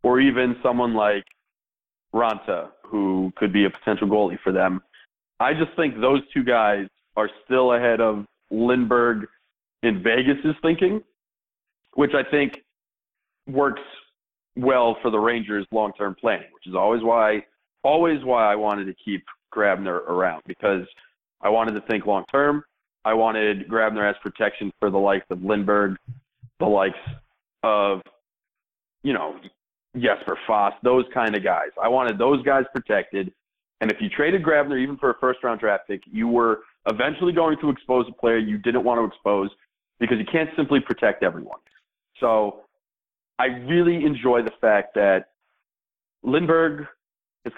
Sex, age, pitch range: male, 30-49, 105-140 Hz